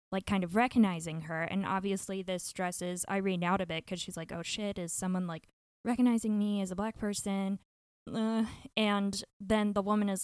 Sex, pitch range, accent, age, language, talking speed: female, 190-225 Hz, American, 10-29, English, 195 wpm